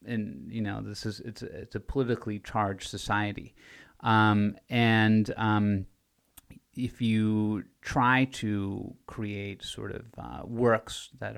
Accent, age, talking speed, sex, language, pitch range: American, 30-49, 130 wpm, male, English, 100-115 Hz